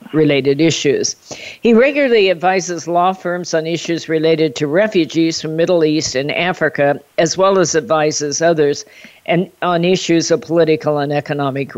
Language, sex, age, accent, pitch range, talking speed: English, female, 50-69, American, 145-170 Hz, 150 wpm